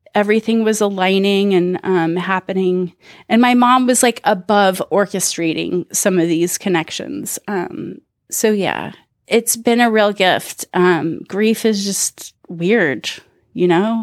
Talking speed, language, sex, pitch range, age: 135 wpm, English, female, 175-210 Hz, 30-49